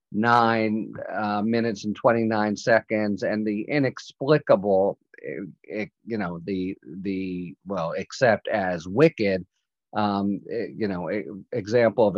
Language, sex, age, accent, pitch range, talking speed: English, male, 50-69, American, 110-135 Hz, 105 wpm